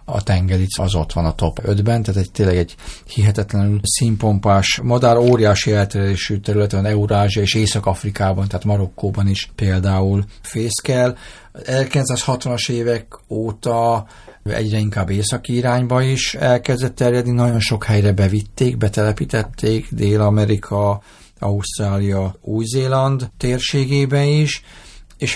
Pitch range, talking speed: 100-125 Hz, 110 wpm